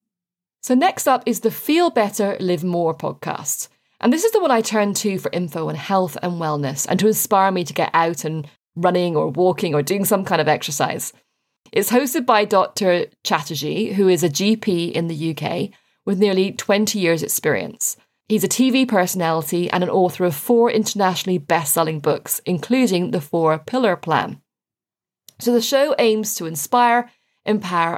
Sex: female